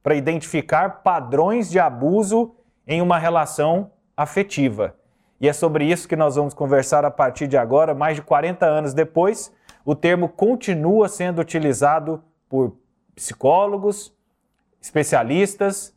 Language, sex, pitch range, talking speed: Portuguese, male, 150-200 Hz, 130 wpm